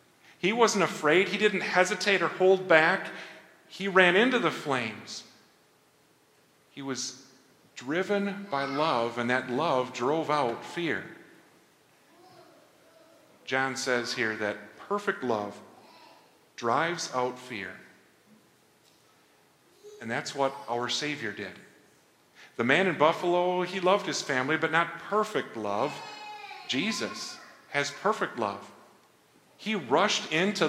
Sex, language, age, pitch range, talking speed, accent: male, English, 40-59, 130-190 Hz, 115 wpm, American